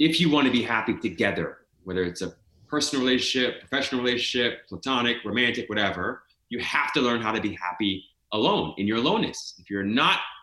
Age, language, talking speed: 30-49, English, 180 wpm